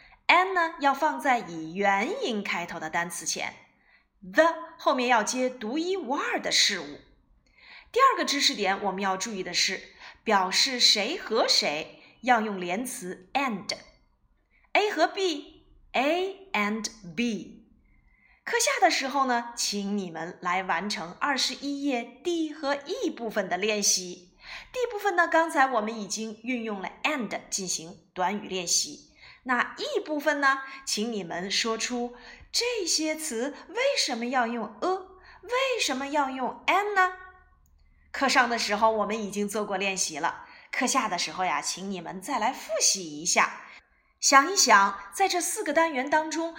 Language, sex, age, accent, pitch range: Chinese, female, 20-39, native, 205-330 Hz